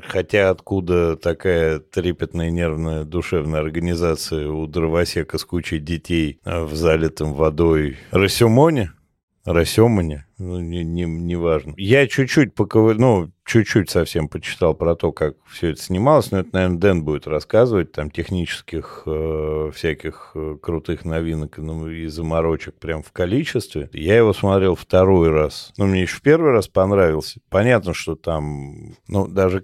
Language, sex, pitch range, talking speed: Russian, male, 80-105 Hz, 140 wpm